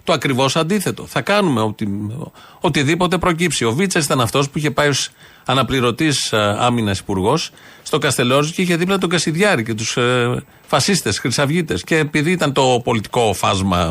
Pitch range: 105-155 Hz